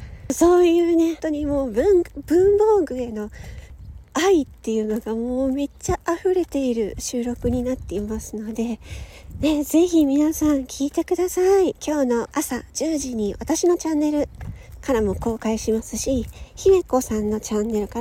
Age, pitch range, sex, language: 40-59, 210-300 Hz, female, Japanese